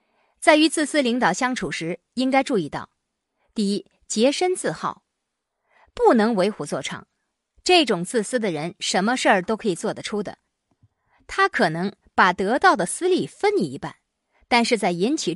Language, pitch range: Chinese, 195-305 Hz